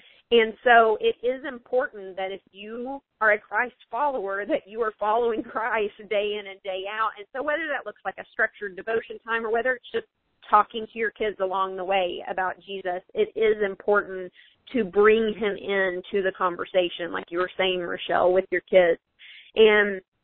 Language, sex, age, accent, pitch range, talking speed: English, female, 30-49, American, 190-230 Hz, 185 wpm